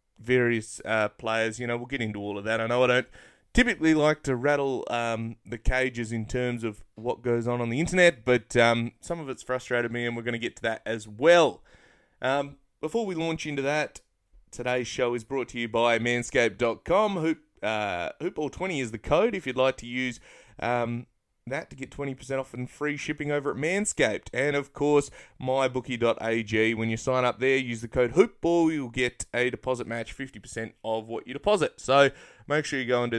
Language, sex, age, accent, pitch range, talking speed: English, male, 20-39, Australian, 115-140 Hz, 200 wpm